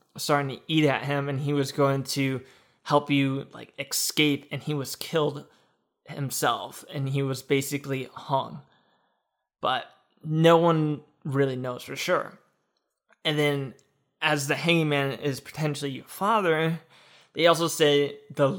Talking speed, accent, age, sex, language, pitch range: 145 wpm, American, 20-39, male, English, 140-155 Hz